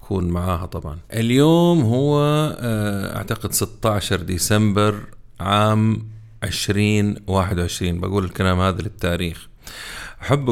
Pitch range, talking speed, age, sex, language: 95-115 Hz, 80 wpm, 30-49, male, Arabic